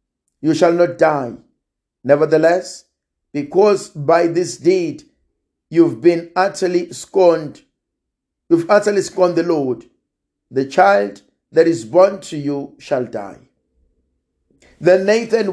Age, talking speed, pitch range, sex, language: 50-69, 110 wpm, 150-190 Hz, male, English